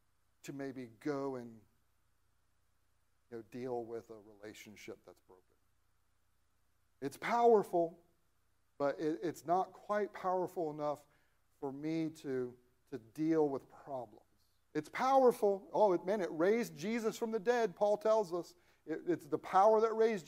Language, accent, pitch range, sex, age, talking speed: English, American, 105-160 Hz, male, 50-69, 125 wpm